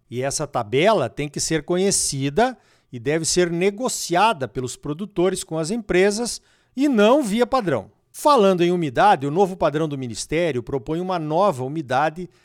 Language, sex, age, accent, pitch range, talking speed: Portuguese, male, 50-69, Brazilian, 145-205 Hz, 155 wpm